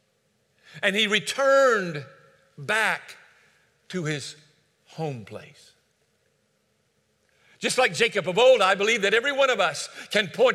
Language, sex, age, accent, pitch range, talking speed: English, male, 50-69, American, 205-280 Hz, 125 wpm